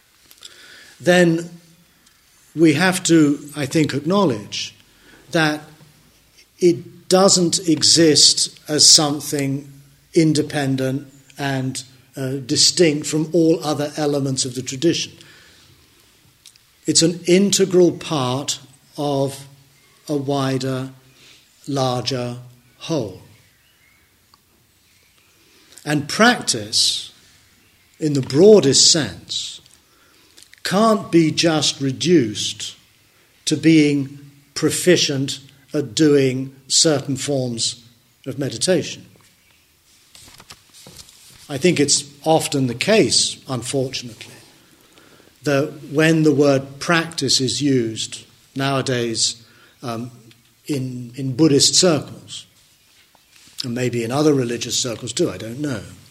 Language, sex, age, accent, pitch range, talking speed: English, male, 40-59, British, 125-155 Hz, 90 wpm